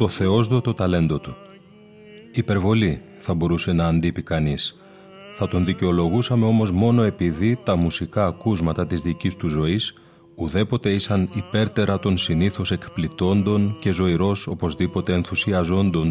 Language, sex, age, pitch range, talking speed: Greek, male, 30-49, 85-110 Hz, 125 wpm